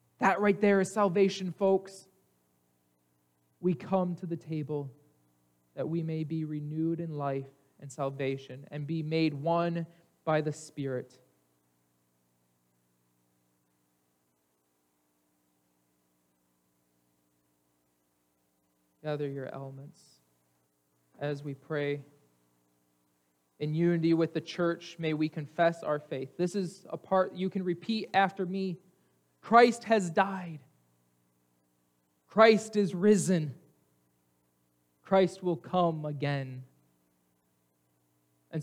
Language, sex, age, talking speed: English, male, 20-39, 100 wpm